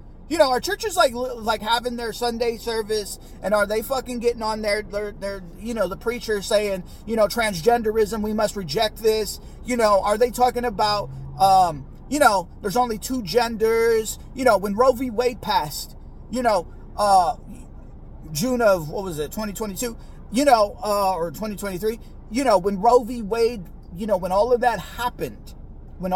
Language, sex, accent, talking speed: English, male, American, 180 wpm